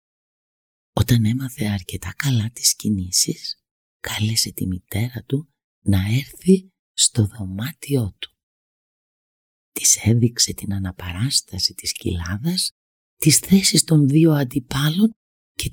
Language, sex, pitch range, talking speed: Greek, female, 105-145 Hz, 105 wpm